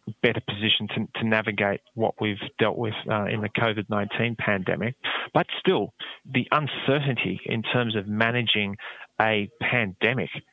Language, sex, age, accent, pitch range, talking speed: English, male, 20-39, Australian, 105-115 Hz, 135 wpm